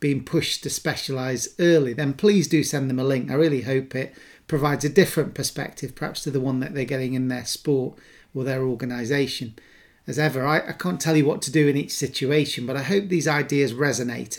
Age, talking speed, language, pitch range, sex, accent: 40-59, 215 wpm, English, 130-155 Hz, male, British